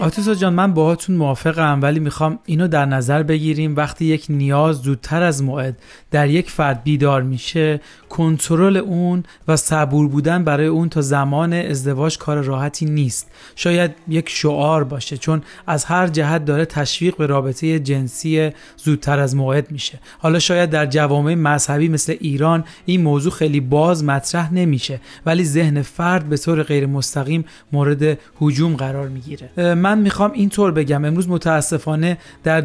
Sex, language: male, Persian